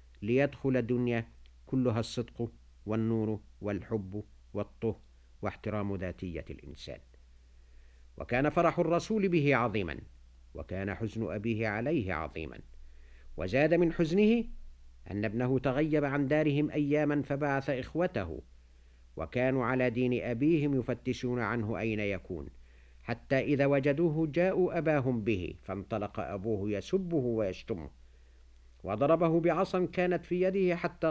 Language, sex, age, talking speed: Arabic, male, 50-69, 105 wpm